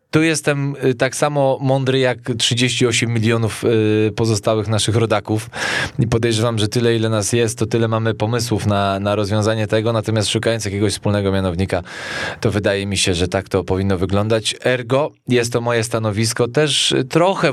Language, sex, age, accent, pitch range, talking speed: Polish, male, 20-39, native, 110-135 Hz, 165 wpm